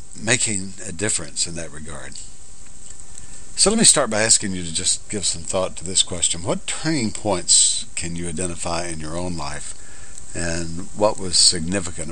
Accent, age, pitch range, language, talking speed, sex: American, 60-79, 85-100 Hz, English, 175 wpm, male